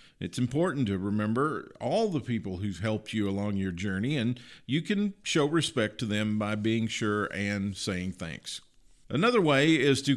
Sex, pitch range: male, 100-145 Hz